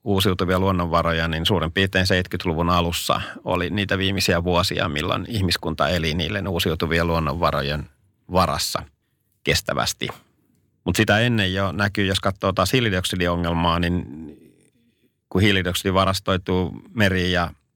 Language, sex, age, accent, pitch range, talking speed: Finnish, male, 30-49, native, 85-100 Hz, 110 wpm